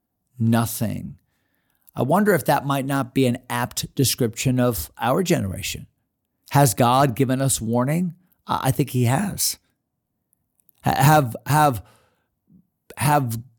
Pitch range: 120-150 Hz